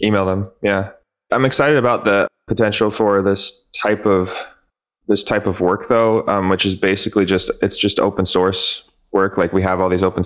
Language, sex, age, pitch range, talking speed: English, male, 20-39, 90-100 Hz, 195 wpm